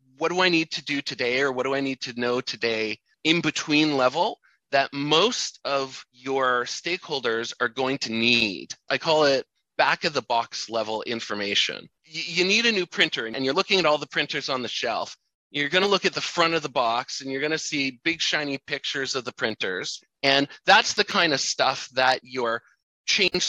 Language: English